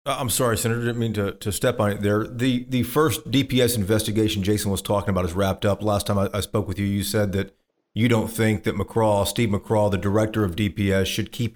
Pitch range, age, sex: 100-120 Hz, 40-59, male